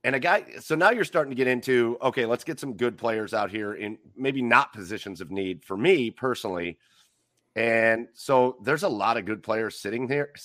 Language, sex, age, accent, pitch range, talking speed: English, male, 30-49, American, 110-130 Hz, 210 wpm